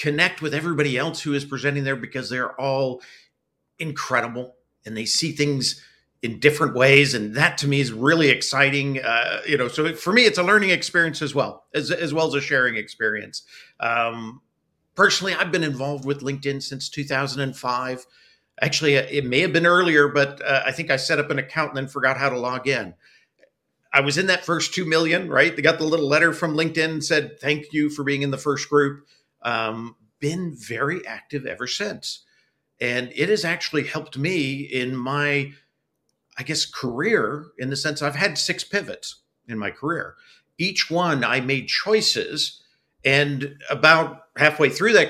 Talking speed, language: 185 wpm, English